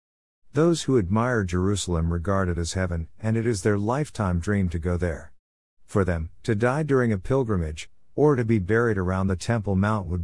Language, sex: English, male